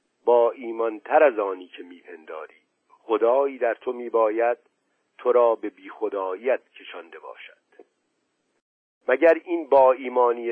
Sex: male